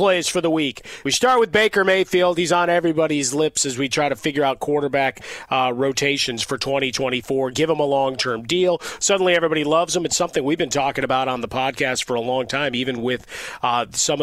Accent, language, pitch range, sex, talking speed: American, English, 125-145 Hz, male, 210 wpm